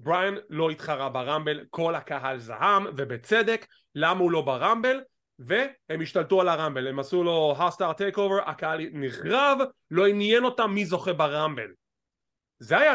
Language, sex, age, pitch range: English, male, 30-49, 155-230 Hz